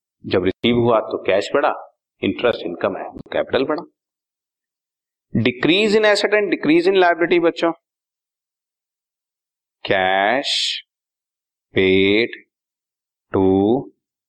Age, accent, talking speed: 40-59, native, 95 wpm